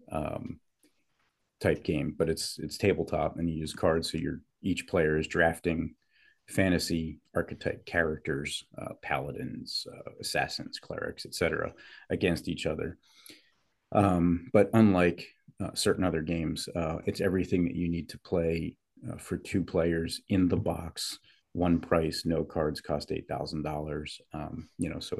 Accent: American